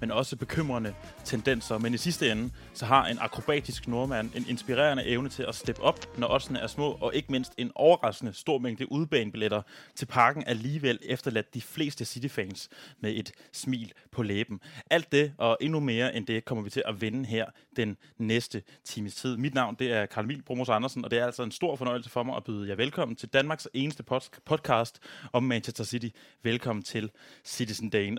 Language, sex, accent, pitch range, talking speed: Danish, male, native, 115-135 Hz, 200 wpm